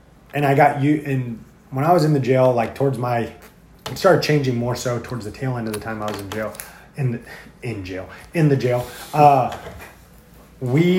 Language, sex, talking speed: English, male, 215 wpm